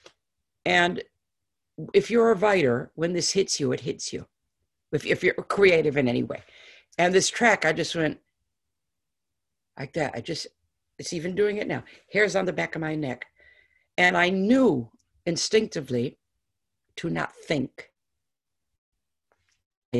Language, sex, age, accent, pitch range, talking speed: English, female, 50-69, American, 120-200 Hz, 145 wpm